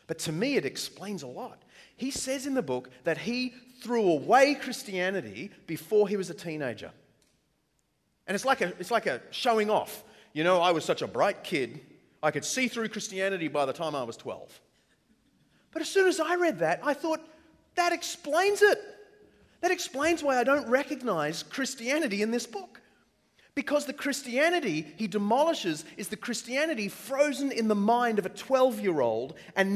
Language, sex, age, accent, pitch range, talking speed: English, male, 30-49, Australian, 185-270 Hz, 175 wpm